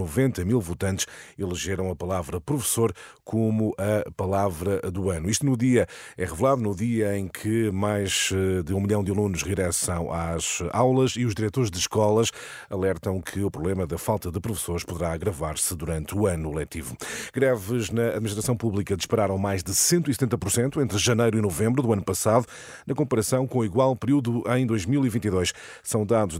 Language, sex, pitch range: Portuguese, male, 90-115 Hz